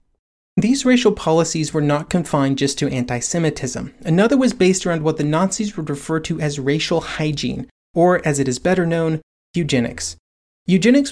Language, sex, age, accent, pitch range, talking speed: English, male, 30-49, American, 140-180 Hz, 160 wpm